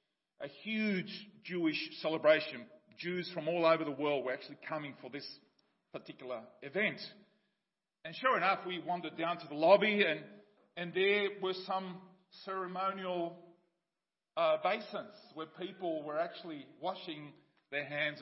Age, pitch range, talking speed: 40-59, 155-210 Hz, 135 wpm